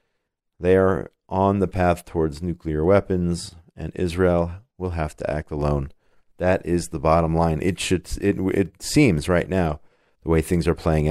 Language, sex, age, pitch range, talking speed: English, male, 40-59, 85-105 Hz, 175 wpm